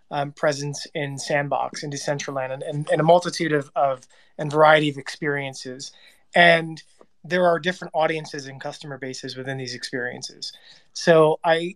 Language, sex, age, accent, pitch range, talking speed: English, male, 30-49, American, 140-170 Hz, 155 wpm